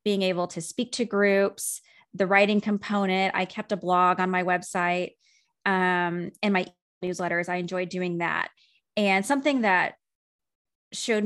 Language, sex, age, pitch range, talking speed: English, female, 20-39, 185-230 Hz, 150 wpm